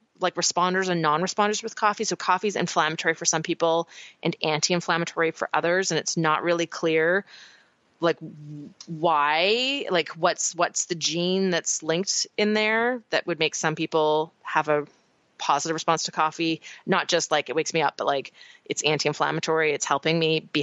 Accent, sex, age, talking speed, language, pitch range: American, female, 20-39, 170 wpm, English, 160-200 Hz